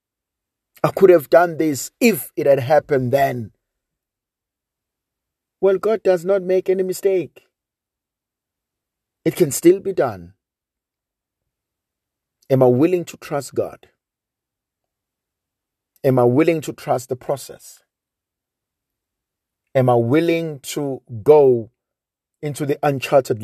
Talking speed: 110 wpm